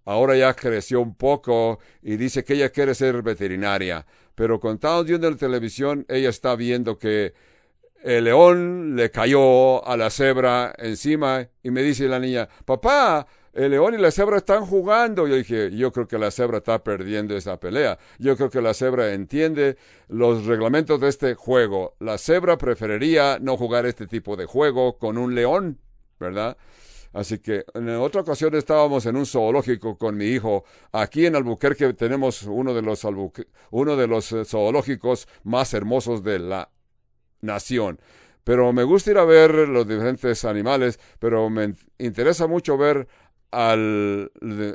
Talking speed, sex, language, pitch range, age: 160 wpm, male, English, 110-140 Hz, 60-79